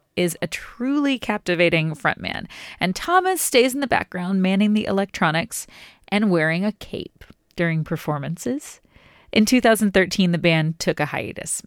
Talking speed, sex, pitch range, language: 140 wpm, female, 170-220 Hz, English